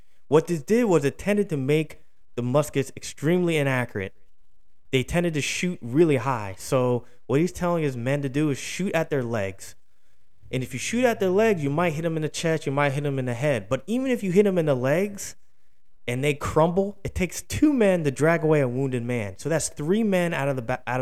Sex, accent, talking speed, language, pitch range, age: male, American, 225 wpm, English, 115-160 Hz, 20-39